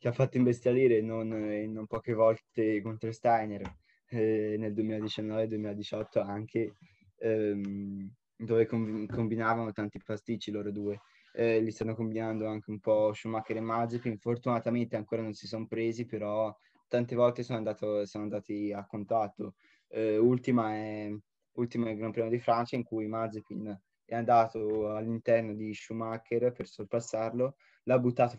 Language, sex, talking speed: Italian, male, 140 wpm